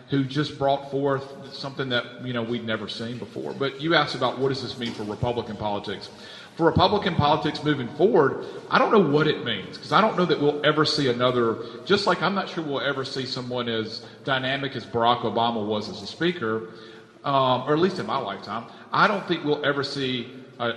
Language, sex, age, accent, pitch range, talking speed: English, male, 40-59, American, 120-155 Hz, 215 wpm